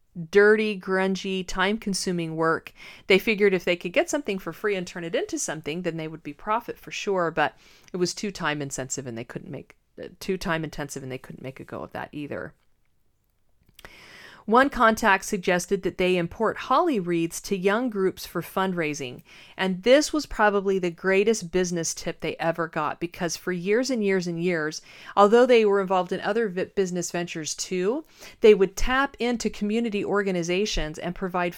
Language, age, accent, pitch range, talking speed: English, 40-59, American, 170-205 Hz, 180 wpm